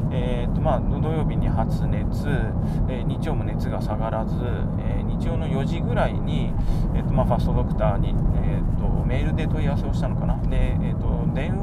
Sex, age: male, 20-39